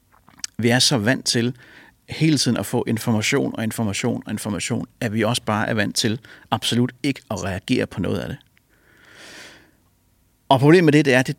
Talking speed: 195 wpm